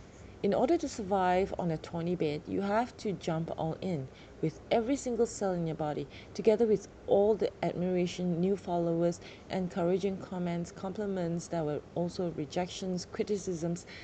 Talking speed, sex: 155 wpm, female